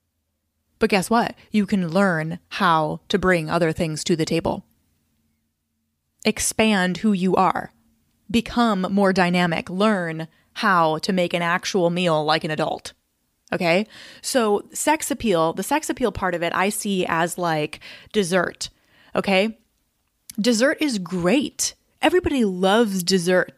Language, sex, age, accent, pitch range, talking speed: English, female, 20-39, American, 175-225 Hz, 135 wpm